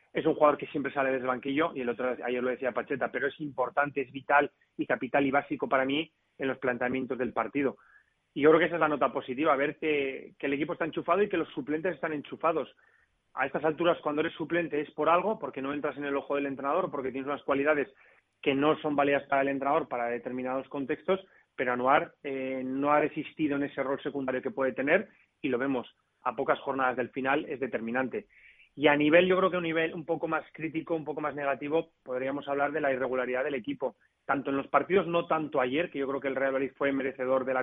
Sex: male